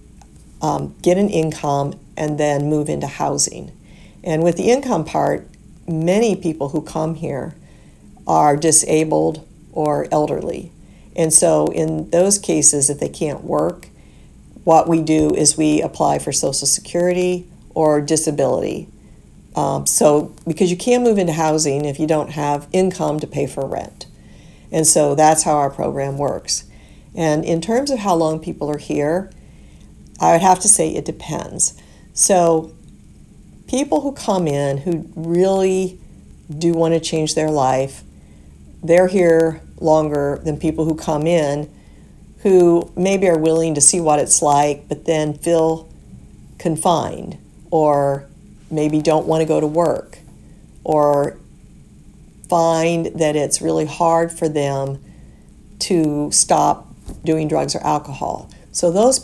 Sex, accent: female, American